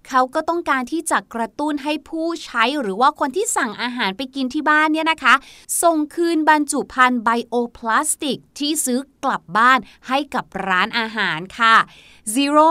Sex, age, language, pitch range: female, 20-39, Thai, 230-305 Hz